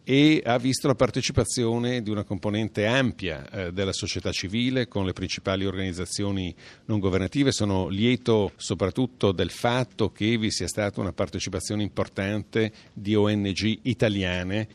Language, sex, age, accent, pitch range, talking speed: Italian, male, 50-69, native, 100-125 Hz, 140 wpm